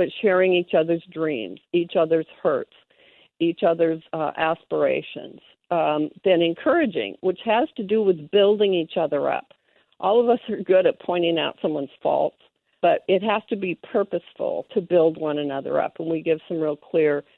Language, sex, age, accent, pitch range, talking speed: English, female, 50-69, American, 160-230 Hz, 175 wpm